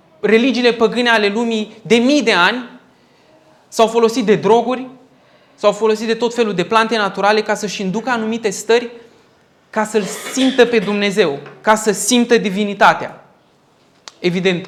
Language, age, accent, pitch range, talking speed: Romanian, 20-39, native, 190-240 Hz, 145 wpm